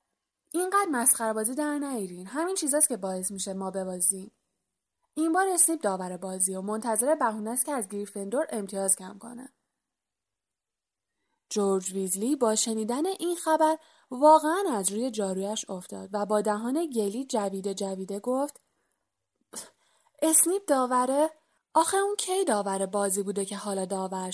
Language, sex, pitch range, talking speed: Persian, female, 195-290 Hz, 135 wpm